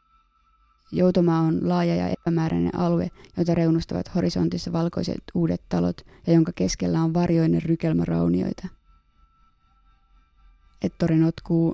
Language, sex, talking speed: Finnish, female, 105 wpm